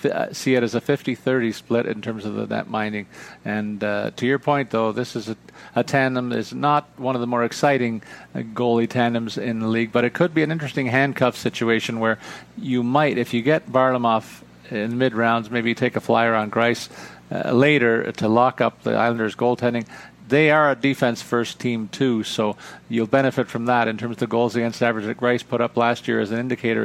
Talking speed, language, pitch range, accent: 210 wpm, English, 110-135 Hz, American